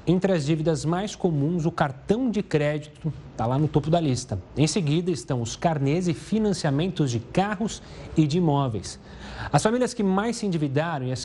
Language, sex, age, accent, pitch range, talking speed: Portuguese, male, 40-59, Brazilian, 145-190 Hz, 185 wpm